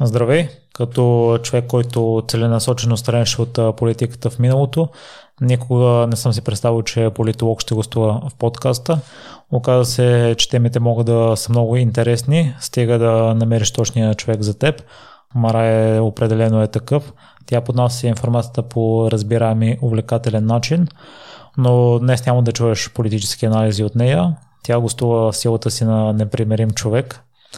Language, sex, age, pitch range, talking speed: Bulgarian, male, 20-39, 110-125 Hz, 140 wpm